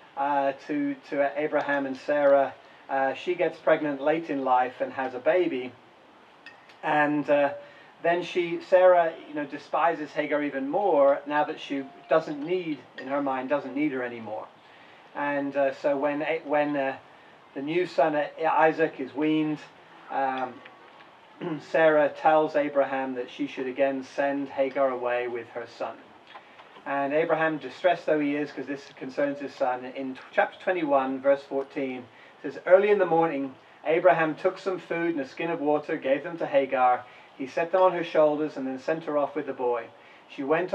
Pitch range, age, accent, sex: 135-160 Hz, 30-49, British, male